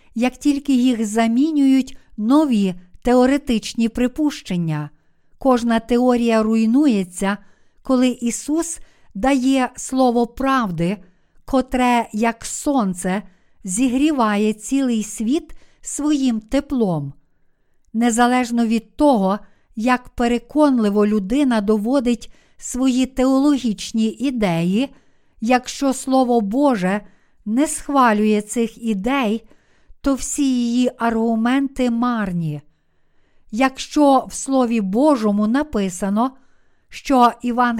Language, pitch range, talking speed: Ukrainian, 215-265 Hz, 85 wpm